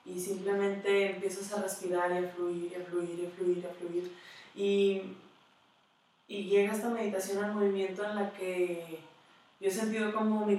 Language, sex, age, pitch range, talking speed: Spanish, female, 20-39, 175-200 Hz, 185 wpm